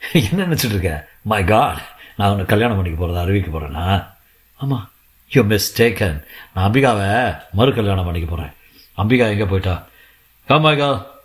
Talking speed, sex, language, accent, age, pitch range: 60 wpm, male, Tamil, native, 50-69, 95-120 Hz